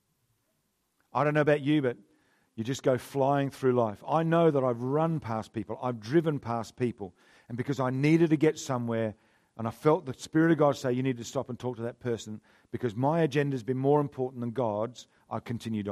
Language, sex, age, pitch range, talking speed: English, male, 50-69, 120-180 Hz, 220 wpm